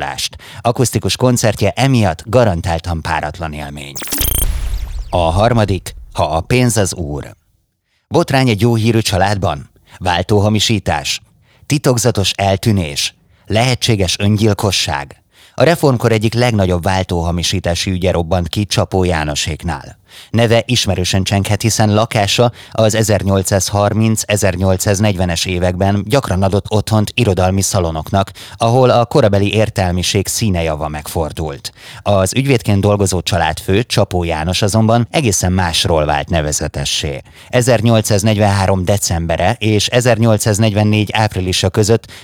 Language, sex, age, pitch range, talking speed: Hungarian, male, 30-49, 90-110 Hz, 100 wpm